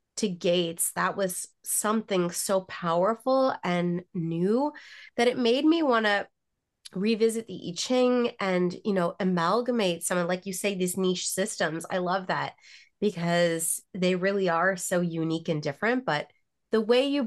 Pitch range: 175-220 Hz